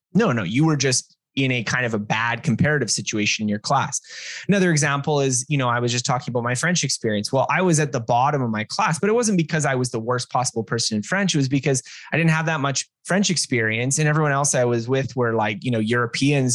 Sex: male